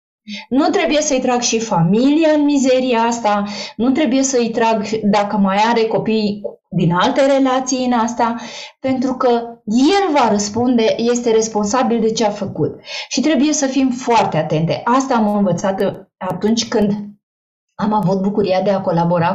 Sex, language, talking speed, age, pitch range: female, Romanian, 155 wpm, 20-39, 200-270 Hz